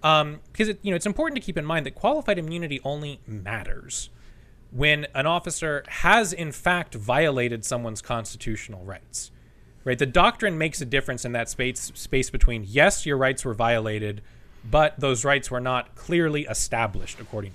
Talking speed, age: 170 wpm, 30-49